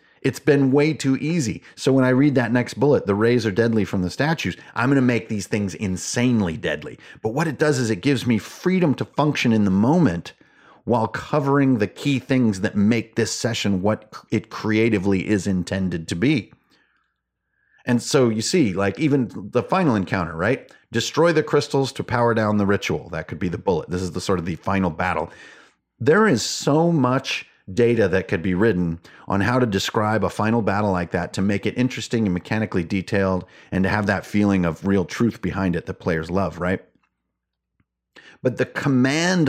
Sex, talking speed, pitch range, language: male, 195 wpm, 95-130 Hz, English